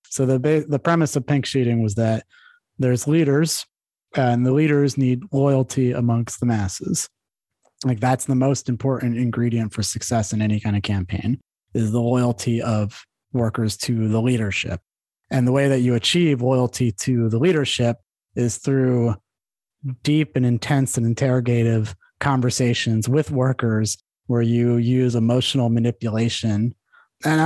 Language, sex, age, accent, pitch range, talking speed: English, male, 30-49, American, 110-130 Hz, 145 wpm